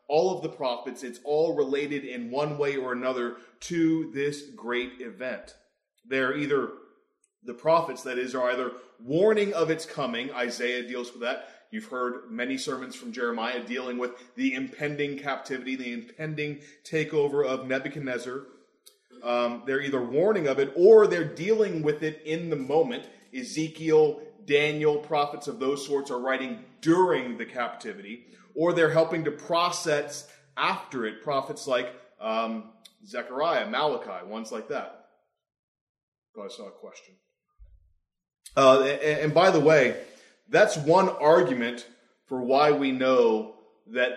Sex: male